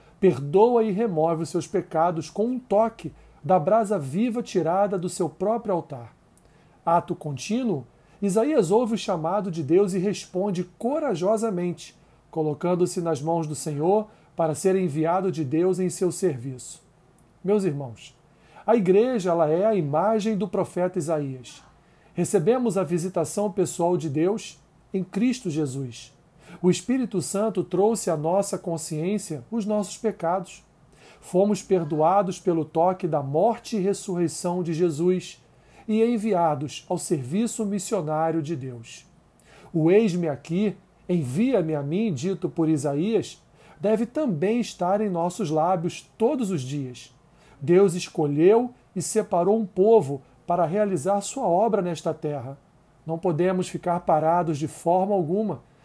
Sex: male